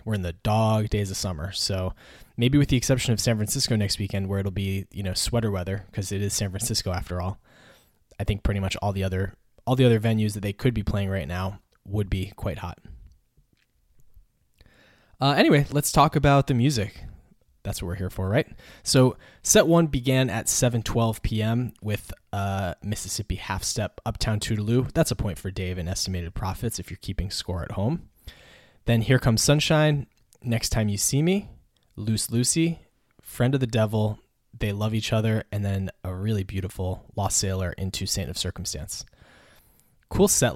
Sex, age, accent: male, 10-29, American